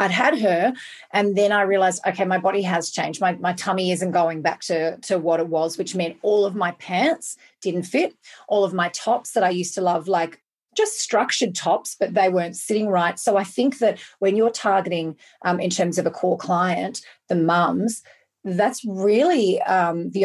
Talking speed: 205 wpm